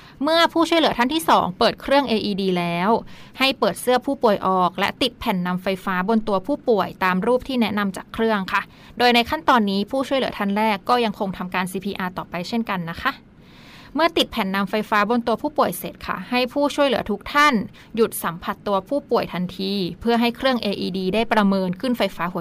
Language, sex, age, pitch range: Thai, female, 20-39, 190-245 Hz